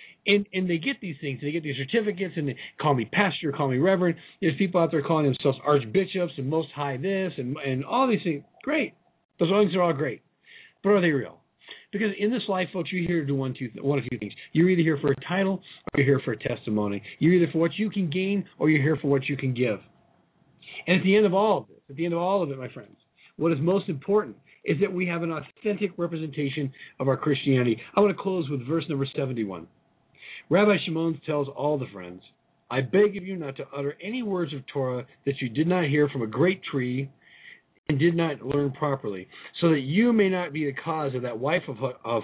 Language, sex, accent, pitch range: English, male, American, 135-180 Hz